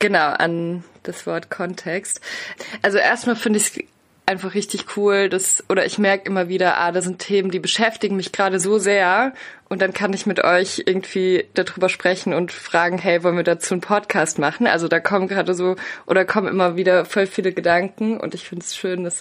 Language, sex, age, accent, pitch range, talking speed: German, female, 20-39, German, 170-195 Hz, 205 wpm